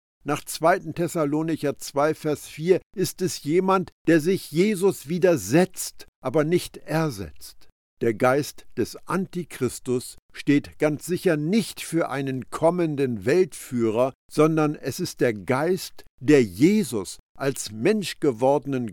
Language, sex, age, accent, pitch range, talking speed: German, male, 50-69, German, 125-170 Hz, 120 wpm